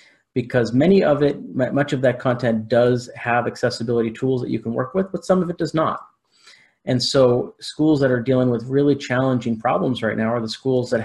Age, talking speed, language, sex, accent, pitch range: 30-49, 210 wpm, English, male, American, 115-130 Hz